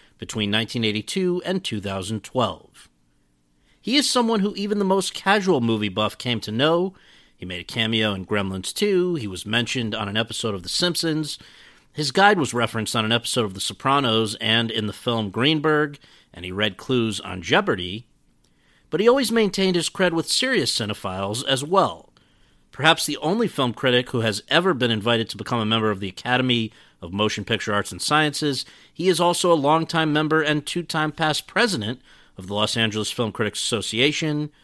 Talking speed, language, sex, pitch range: 185 wpm, English, male, 110-160 Hz